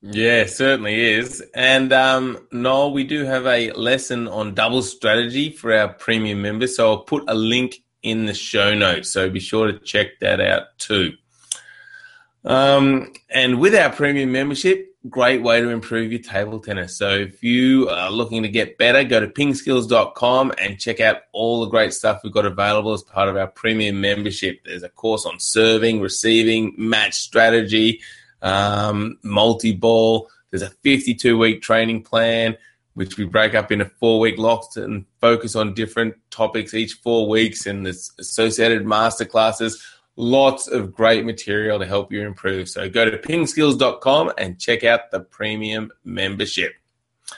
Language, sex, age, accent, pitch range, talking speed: English, male, 20-39, Australian, 110-130 Hz, 160 wpm